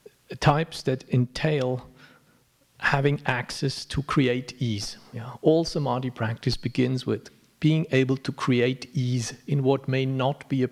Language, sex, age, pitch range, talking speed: English, male, 50-69, 125-150 Hz, 135 wpm